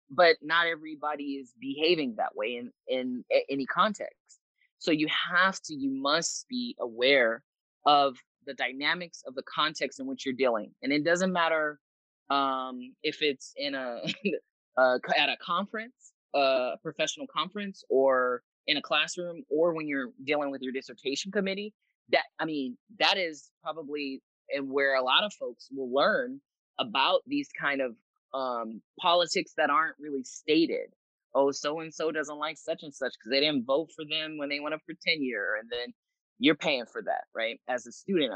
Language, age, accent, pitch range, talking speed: English, 20-39, American, 135-175 Hz, 170 wpm